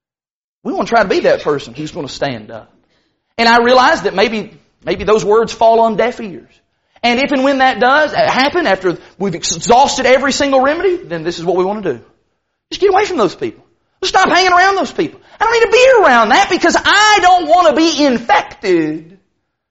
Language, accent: English, American